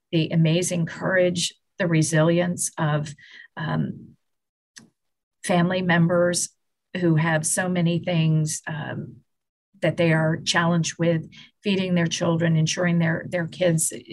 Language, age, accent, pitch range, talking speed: English, 40-59, American, 160-175 Hz, 115 wpm